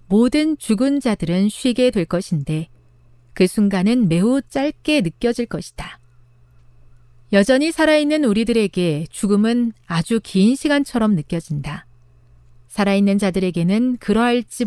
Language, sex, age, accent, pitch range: Korean, female, 40-59, native, 160-245 Hz